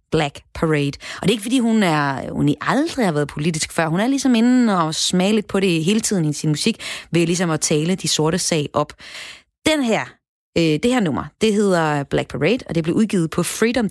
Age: 30-49